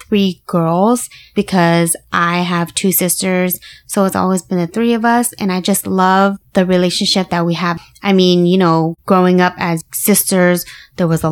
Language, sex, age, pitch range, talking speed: English, female, 20-39, 170-190 Hz, 185 wpm